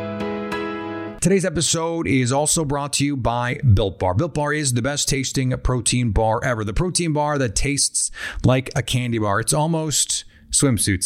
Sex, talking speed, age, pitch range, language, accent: male, 170 wpm, 30-49, 110-140 Hz, English, American